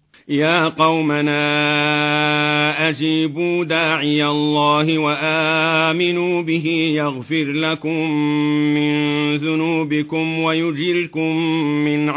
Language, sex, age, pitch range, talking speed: Arabic, male, 40-59, 150-160 Hz, 65 wpm